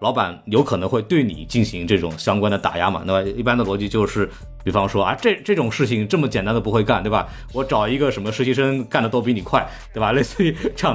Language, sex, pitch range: Chinese, male, 100-135 Hz